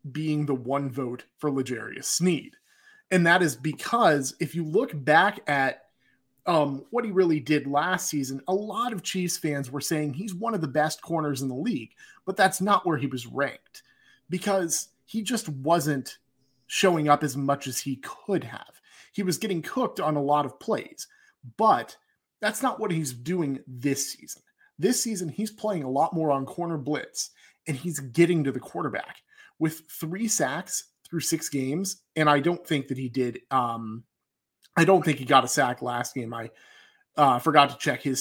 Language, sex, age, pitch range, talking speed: English, male, 30-49, 135-185 Hz, 190 wpm